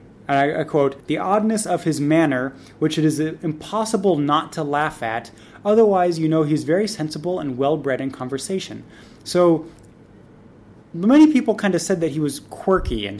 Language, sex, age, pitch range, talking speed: English, male, 20-39, 140-180 Hz, 170 wpm